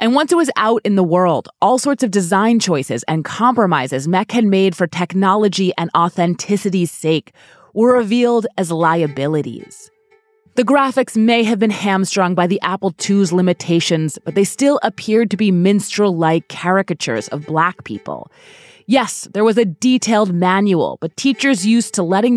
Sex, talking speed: female, 160 wpm